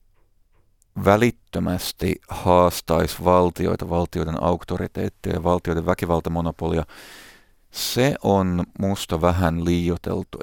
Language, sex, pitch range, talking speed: Finnish, male, 85-95 Hz, 75 wpm